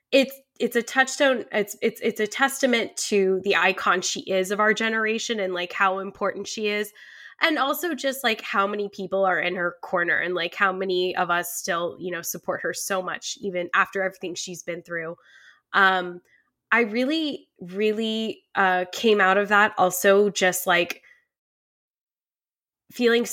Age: 10-29